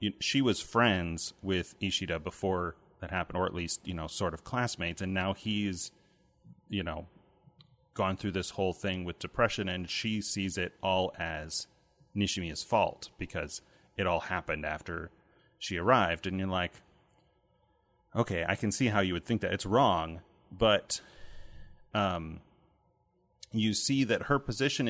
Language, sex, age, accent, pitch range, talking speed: English, male, 30-49, American, 90-110 Hz, 155 wpm